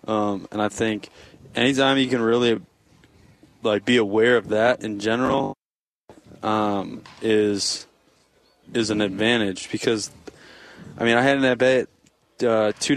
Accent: American